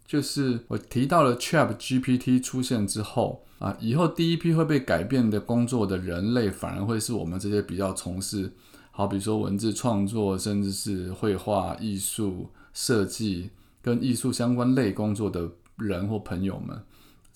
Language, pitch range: Chinese, 100-125 Hz